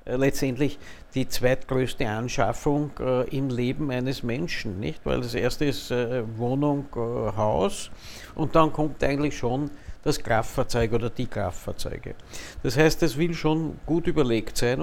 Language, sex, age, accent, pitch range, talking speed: German, male, 60-79, Austrian, 105-140 Hz, 145 wpm